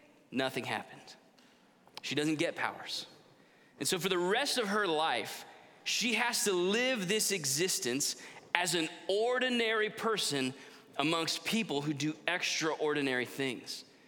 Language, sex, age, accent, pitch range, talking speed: English, male, 30-49, American, 150-215 Hz, 130 wpm